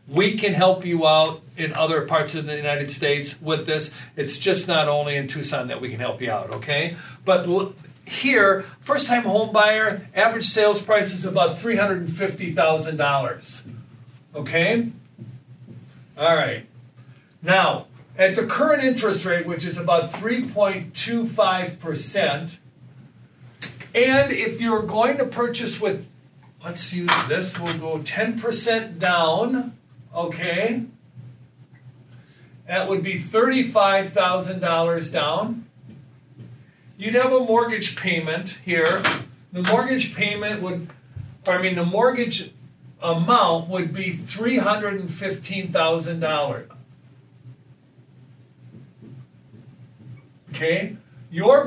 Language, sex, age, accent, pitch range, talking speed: English, male, 50-69, American, 135-205 Hz, 105 wpm